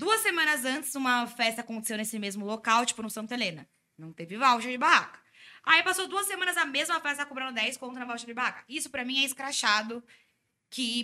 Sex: female